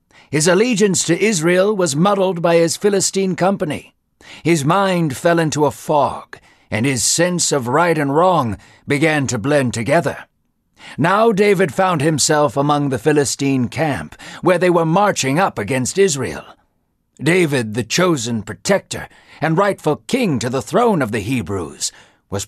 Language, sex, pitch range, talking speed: English, male, 130-185 Hz, 150 wpm